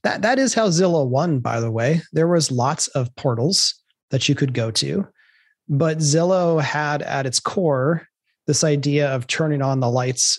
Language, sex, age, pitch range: English, male, 30-49, 130-155 Hz